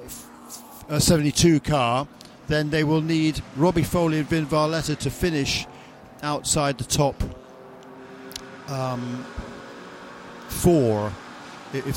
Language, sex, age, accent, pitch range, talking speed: English, male, 50-69, British, 125-155 Hz, 100 wpm